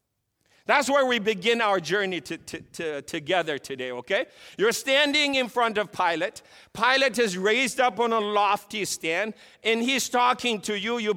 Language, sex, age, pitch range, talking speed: English, male, 50-69, 175-235 Hz, 155 wpm